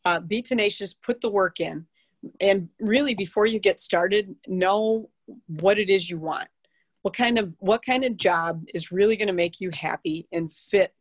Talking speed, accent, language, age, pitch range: 190 wpm, American, English, 40-59, 170-205 Hz